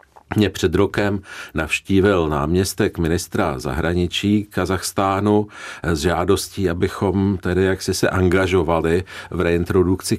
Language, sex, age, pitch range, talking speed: Czech, male, 50-69, 85-95 Hz, 100 wpm